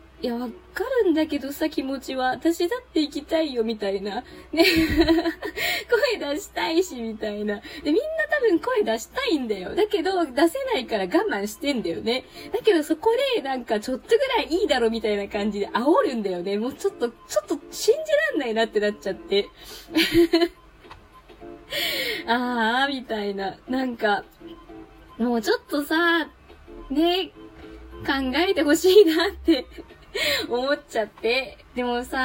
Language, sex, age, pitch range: Japanese, female, 20-39, 235-335 Hz